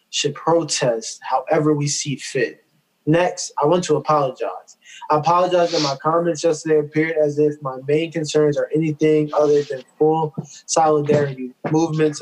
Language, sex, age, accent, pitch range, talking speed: English, male, 20-39, American, 145-155 Hz, 145 wpm